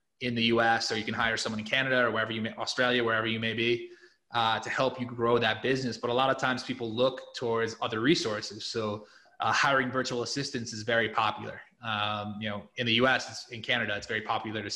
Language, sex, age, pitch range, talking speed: English, male, 20-39, 110-125 Hz, 230 wpm